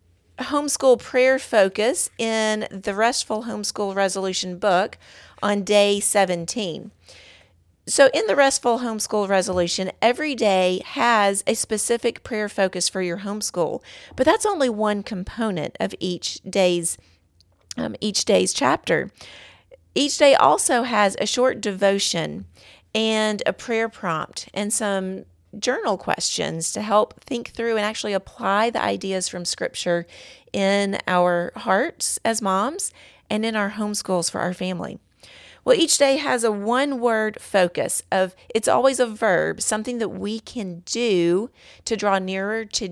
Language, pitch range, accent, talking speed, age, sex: English, 180-230 Hz, American, 140 wpm, 40-59, female